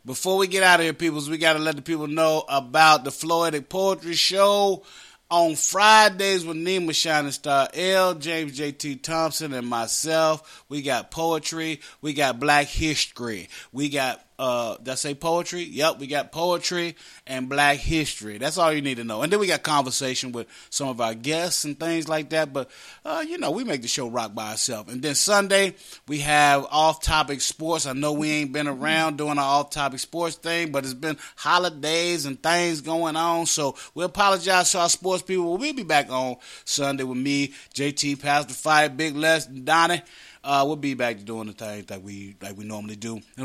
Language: English